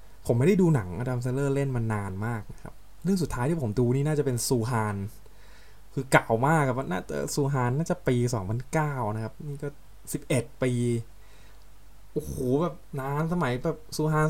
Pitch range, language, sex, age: 105-140 Hz, Thai, male, 20-39